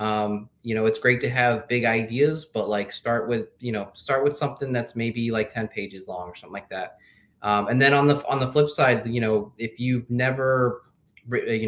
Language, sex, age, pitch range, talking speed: English, male, 20-39, 110-130 Hz, 220 wpm